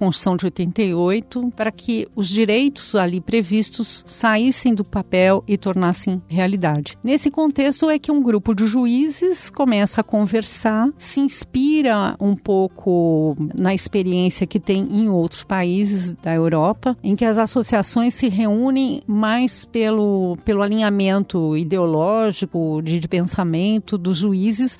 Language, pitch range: Portuguese, 185-235 Hz